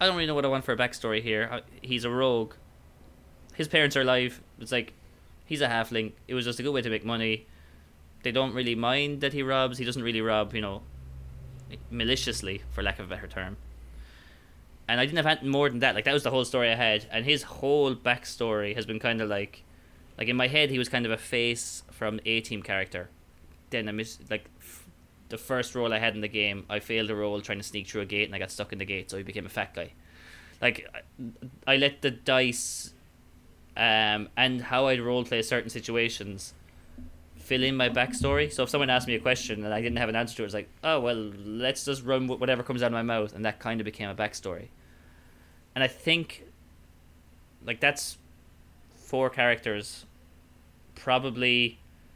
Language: English